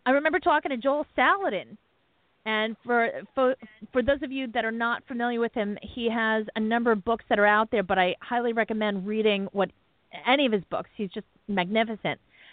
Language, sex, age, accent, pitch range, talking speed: English, female, 40-59, American, 205-250 Hz, 200 wpm